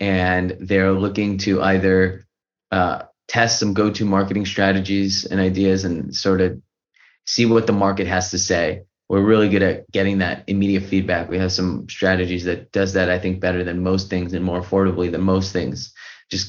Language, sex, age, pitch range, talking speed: English, male, 30-49, 90-100 Hz, 190 wpm